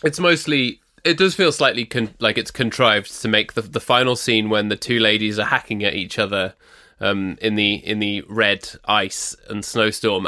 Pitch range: 105-120 Hz